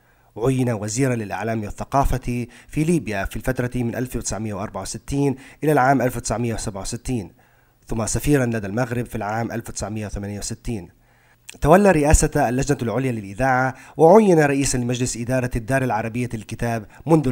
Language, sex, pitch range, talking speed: Arabic, male, 110-130 Hz, 115 wpm